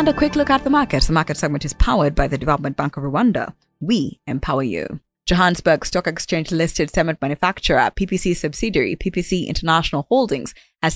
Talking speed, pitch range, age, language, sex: 180 wpm, 155-200 Hz, 20-39, English, female